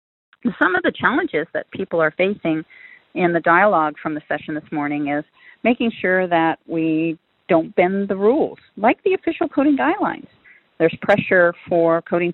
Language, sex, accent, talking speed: English, female, American, 165 wpm